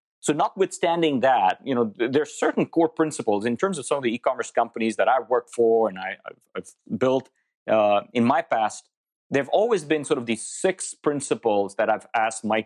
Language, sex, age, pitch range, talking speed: English, male, 30-49, 105-140 Hz, 215 wpm